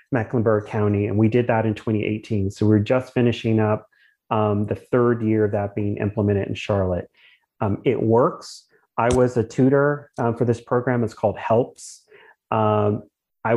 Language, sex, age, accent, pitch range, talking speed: English, male, 30-49, American, 105-120 Hz, 175 wpm